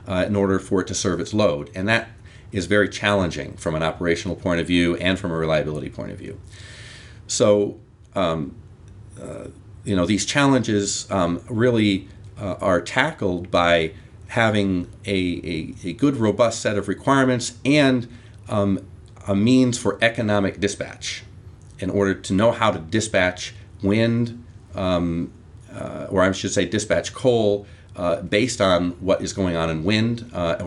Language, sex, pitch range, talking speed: English, male, 90-110 Hz, 160 wpm